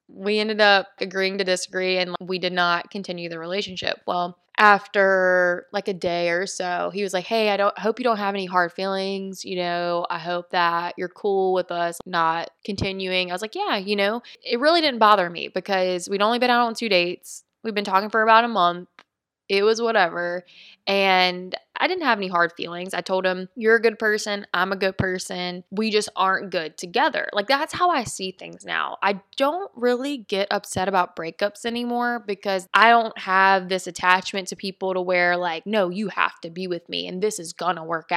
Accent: American